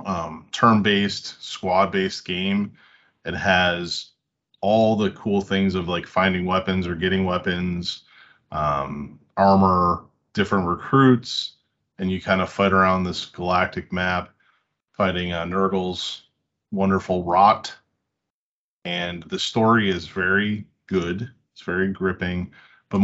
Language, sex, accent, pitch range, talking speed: English, male, American, 90-100 Hz, 115 wpm